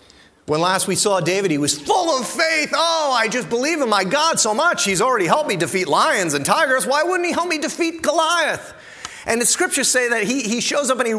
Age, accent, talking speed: 40-59, American, 240 wpm